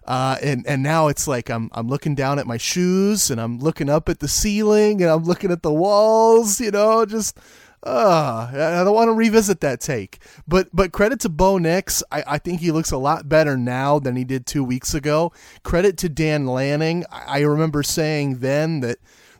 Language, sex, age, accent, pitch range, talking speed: English, male, 30-49, American, 140-175 Hz, 215 wpm